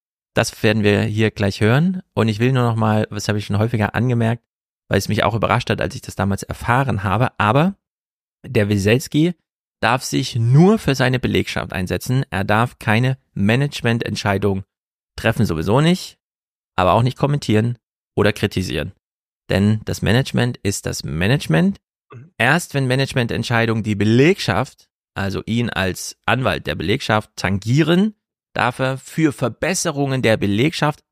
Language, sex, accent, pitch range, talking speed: German, male, German, 105-135 Hz, 145 wpm